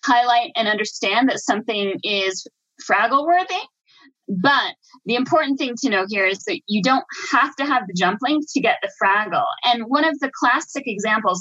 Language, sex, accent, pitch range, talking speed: English, female, American, 215-280 Hz, 185 wpm